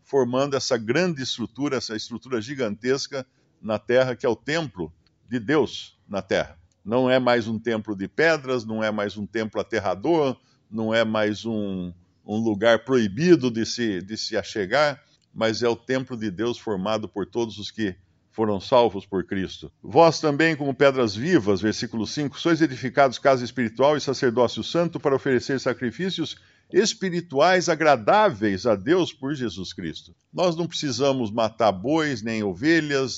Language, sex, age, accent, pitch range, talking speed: Portuguese, male, 50-69, Brazilian, 110-145 Hz, 155 wpm